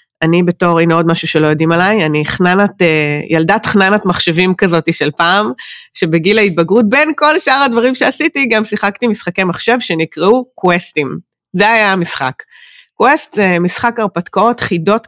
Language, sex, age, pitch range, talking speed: Hebrew, female, 30-49, 175-235 Hz, 145 wpm